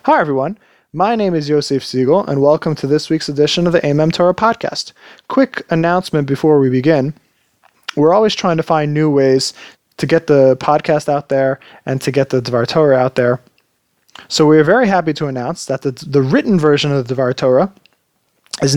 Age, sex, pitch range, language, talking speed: 20-39, male, 135-160 Hz, English, 195 wpm